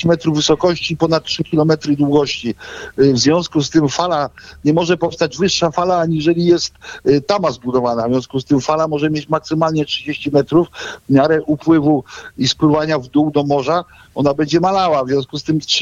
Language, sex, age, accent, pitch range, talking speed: Polish, male, 50-69, native, 130-165 Hz, 175 wpm